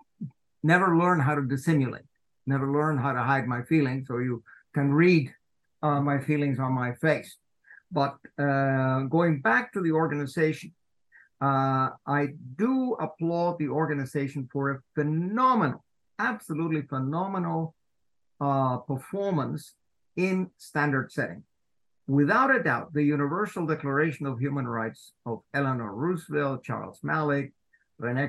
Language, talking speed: English, 125 wpm